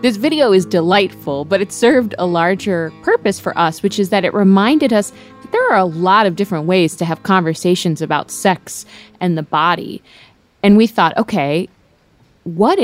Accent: American